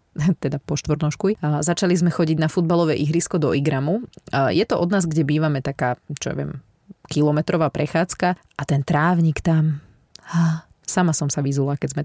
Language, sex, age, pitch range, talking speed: Slovak, female, 30-49, 145-180 Hz, 170 wpm